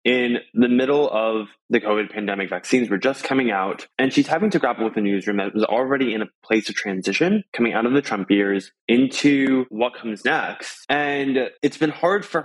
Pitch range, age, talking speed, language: 105-145 Hz, 20-39, 205 wpm, English